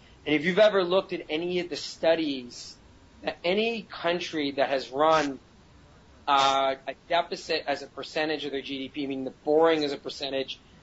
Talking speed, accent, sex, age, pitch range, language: 170 wpm, American, male, 30-49, 135-160 Hz, English